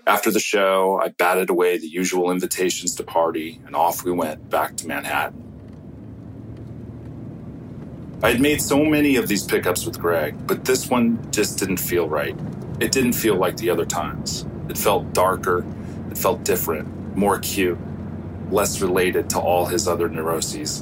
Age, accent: 30-49, American